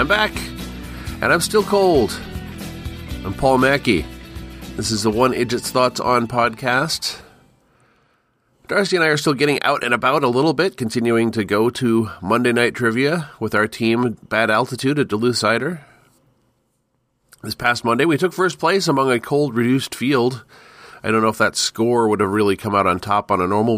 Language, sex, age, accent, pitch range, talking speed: English, male, 40-59, American, 105-135 Hz, 180 wpm